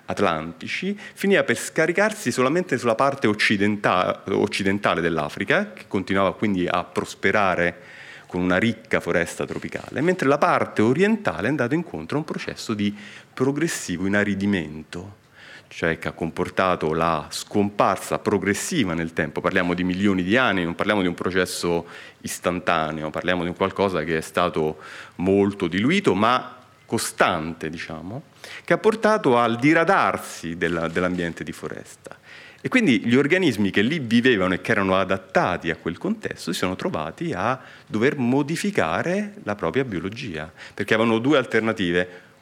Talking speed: 145 wpm